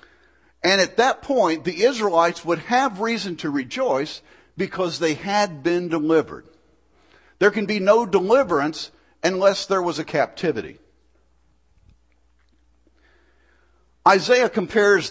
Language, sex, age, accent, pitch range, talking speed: English, male, 50-69, American, 135-195 Hz, 110 wpm